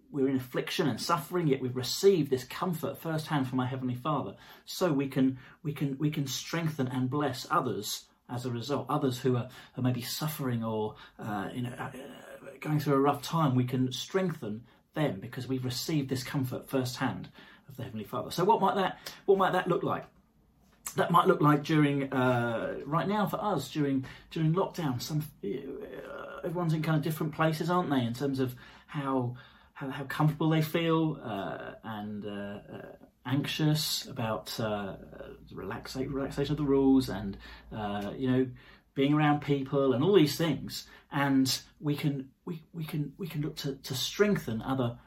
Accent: British